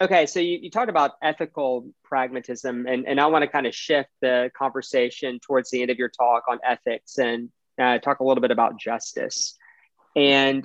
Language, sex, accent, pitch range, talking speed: English, male, American, 125-160 Hz, 195 wpm